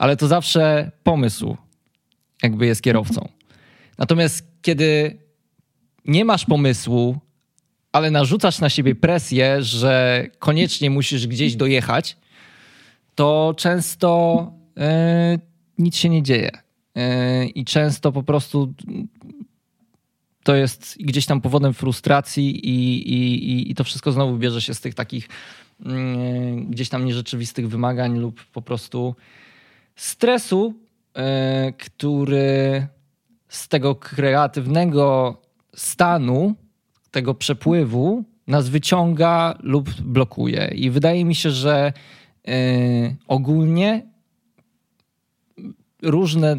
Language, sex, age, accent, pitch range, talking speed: Polish, male, 20-39, native, 125-160 Hz, 95 wpm